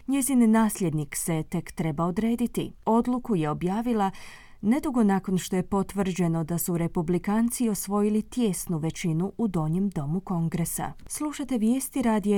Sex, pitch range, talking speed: female, 175-220 Hz, 130 wpm